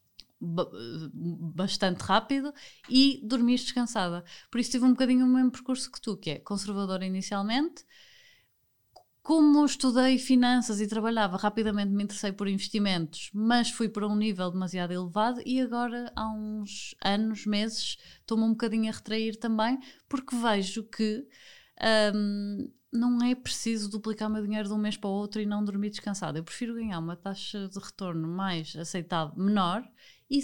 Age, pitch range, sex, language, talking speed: 20-39, 195-230 Hz, female, Portuguese, 160 wpm